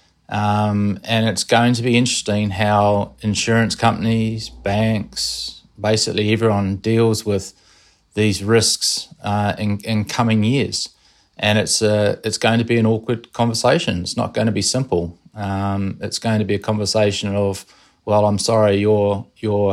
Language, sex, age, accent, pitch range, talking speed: English, male, 20-39, Australian, 100-110 Hz, 155 wpm